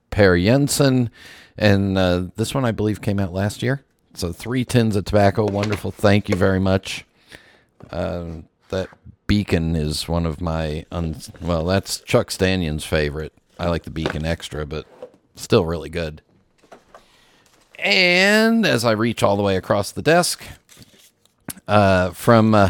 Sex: male